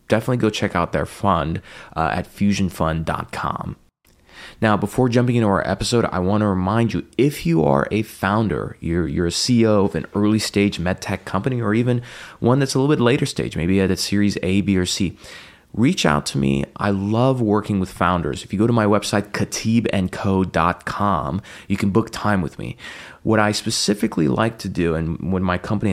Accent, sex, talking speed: American, male, 195 wpm